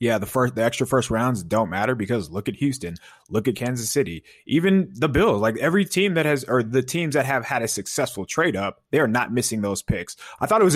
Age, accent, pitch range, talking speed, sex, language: 20-39, American, 110-145 Hz, 245 wpm, male, English